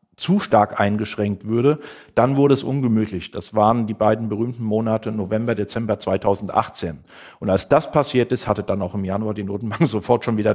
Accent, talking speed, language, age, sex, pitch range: German, 180 wpm, German, 50-69, male, 105-135 Hz